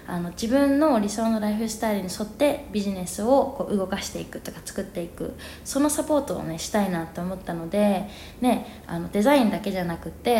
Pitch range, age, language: 180-240 Hz, 20-39, Japanese